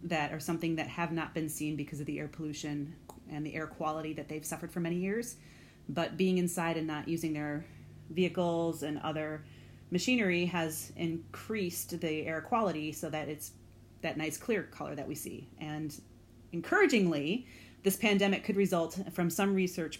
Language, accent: English, American